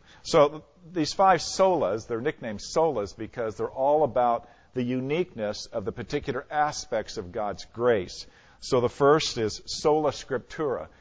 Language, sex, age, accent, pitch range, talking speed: English, male, 50-69, American, 105-150 Hz, 140 wpm